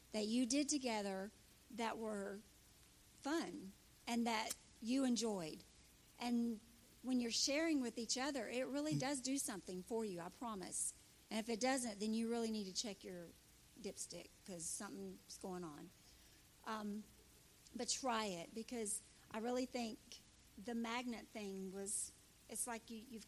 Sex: female